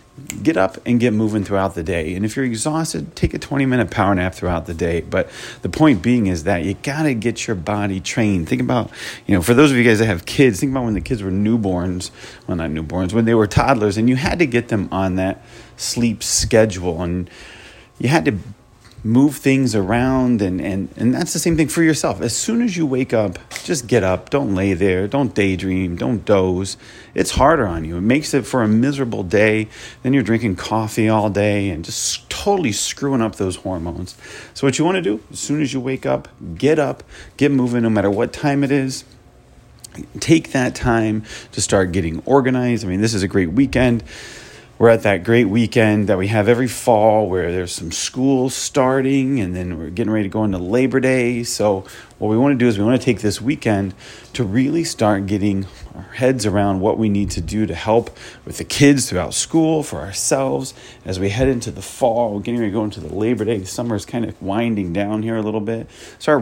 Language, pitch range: English, 95-125 Hz